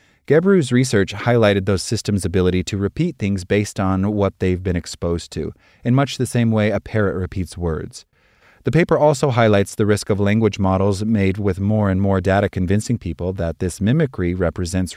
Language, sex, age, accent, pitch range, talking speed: English, male, 30-49, American, 90-115 Hz, 185 wpm